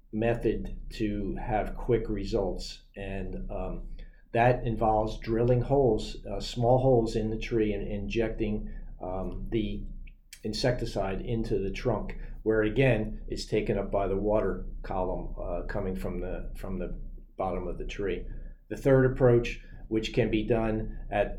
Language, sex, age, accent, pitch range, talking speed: English, male, 50-69, American, 100-115 Hz, 145 wpm